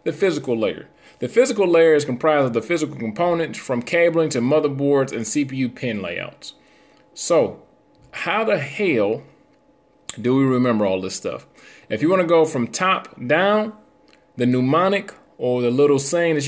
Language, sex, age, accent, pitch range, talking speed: English, male, 30-49, American, 125-170 Hz, 160 wpm